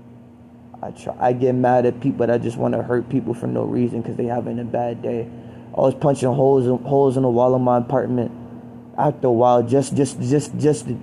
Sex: male